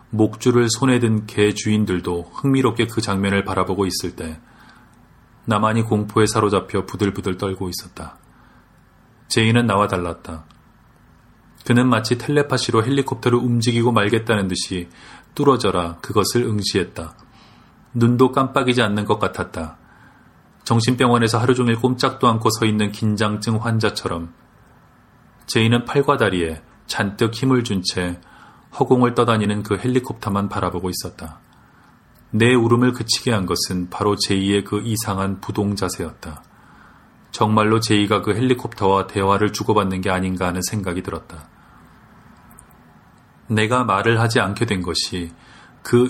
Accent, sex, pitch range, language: native, male, 95-120 Hz, Korean